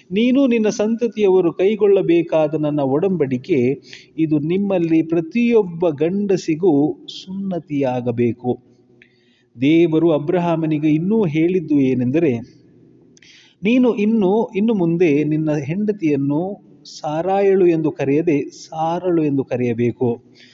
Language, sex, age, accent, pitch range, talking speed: Kannada, male, 30-49, native, 135-185 Hz, 80 wpm